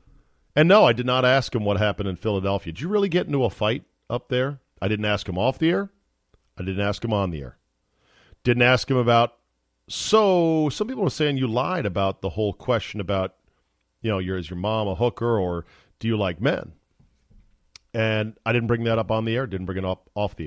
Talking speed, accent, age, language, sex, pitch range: 225 wpm, American, 40-59, English, male, 95-125 Hz